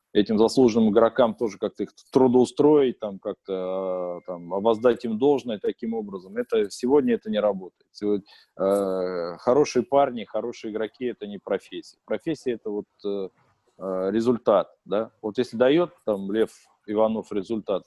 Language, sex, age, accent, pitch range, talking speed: Russian, male, 20-39, native, 100-130 Hz, 140 wpm